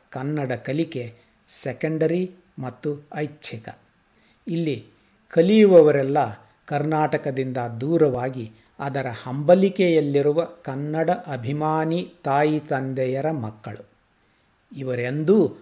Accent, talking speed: native, 65 wpm